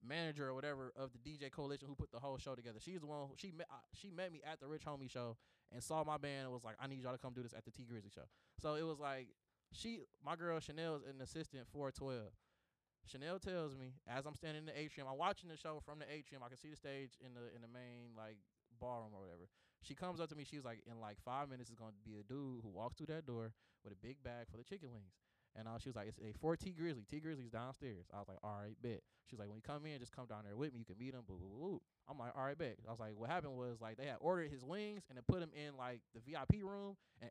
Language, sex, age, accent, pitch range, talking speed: English, male, 20-39, American, 120-160 Hz, 295 wpm